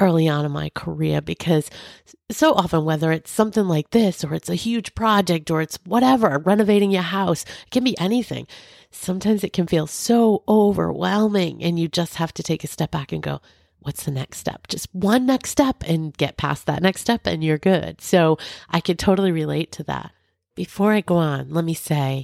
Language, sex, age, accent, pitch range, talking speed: English, female, 30-49, American, 150-195 Hz, 205 wpm